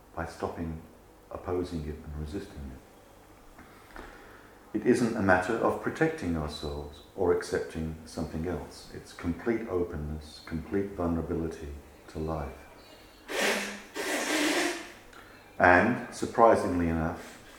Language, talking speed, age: English, 95 wpm, 50-69